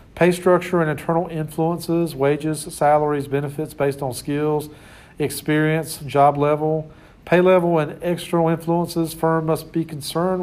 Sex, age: male, 40-59